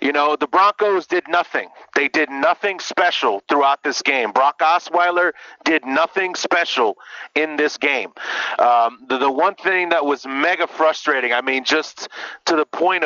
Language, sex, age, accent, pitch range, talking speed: English, male, 30-49, American, 135-175 Hz, 165 wpm